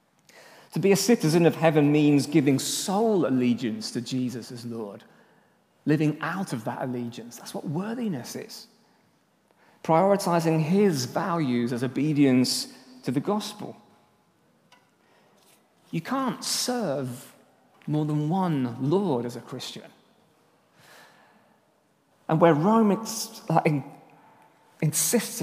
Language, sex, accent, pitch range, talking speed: English, male, British, 125-175 Hz, 110 wpm